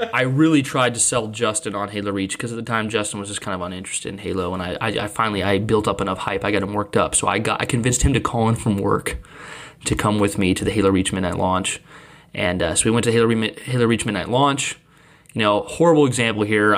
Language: English